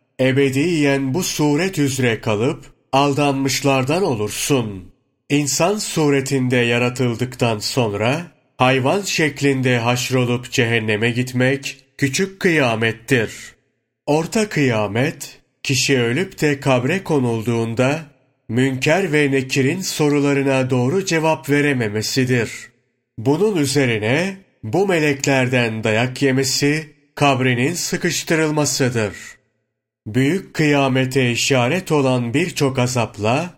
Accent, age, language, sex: native, 40-59, Turkish, male